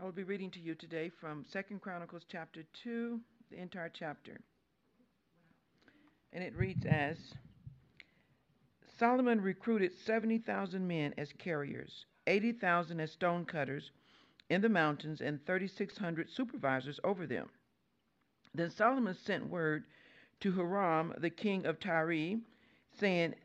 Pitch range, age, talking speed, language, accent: 160-200 Hz, 60-79, 125 wpm, English, American